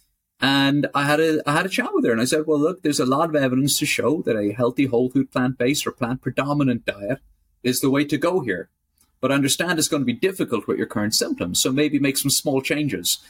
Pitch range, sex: 110-155 Hz, male